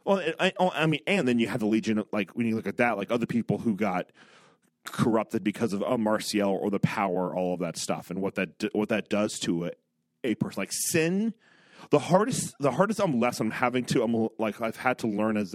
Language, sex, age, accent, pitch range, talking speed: English, male, 30-49, American, 105-130 Hz, 245 wpm